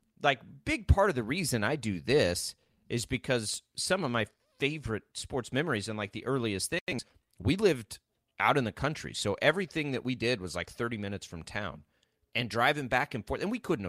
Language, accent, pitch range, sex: English, American, 100-135 Hz, male